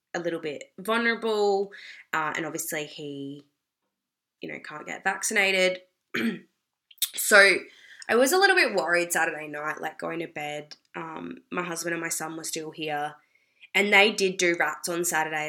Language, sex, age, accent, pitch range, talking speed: English, female, 20-39, Australian, 155-185 Hz, 165 wpm